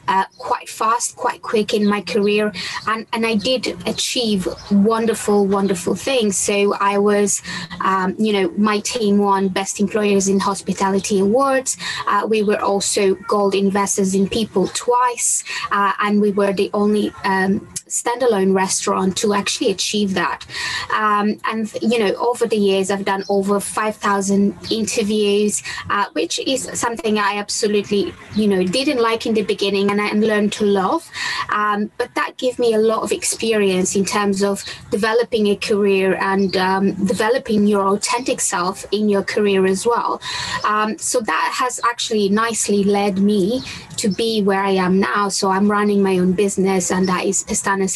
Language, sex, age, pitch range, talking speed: English, female, 20-39, 195-220 Hz, 165 wpm